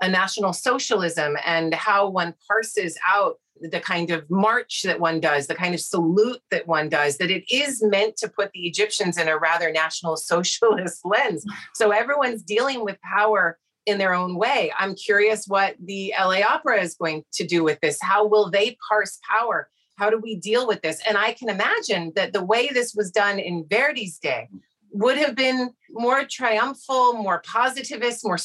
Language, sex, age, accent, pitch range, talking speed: English, female, 30-49, American, 175-225 Hz, 190 wpm